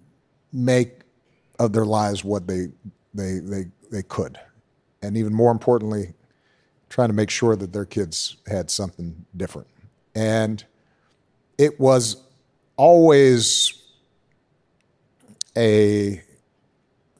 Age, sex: 50-69, male